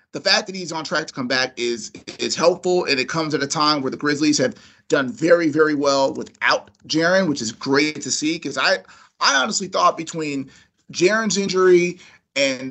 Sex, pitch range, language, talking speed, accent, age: male, 140-180 Hz, English, 200 wpm, American, 30-49